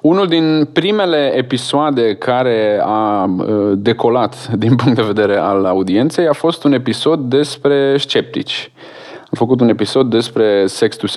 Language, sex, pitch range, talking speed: Romanian, male, 120-160 Hz, 135 wpm